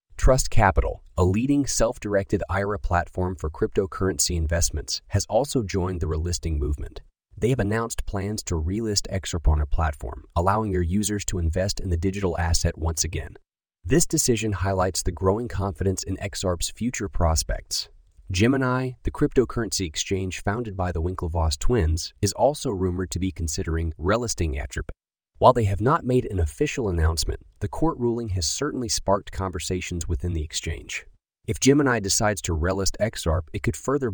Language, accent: English, American